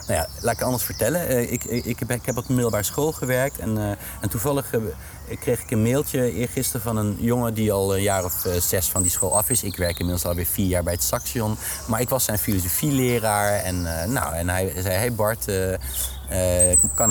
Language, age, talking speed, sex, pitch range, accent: Dutch, 30-49, 230 wpm, male, 95-120 Hz, Dutch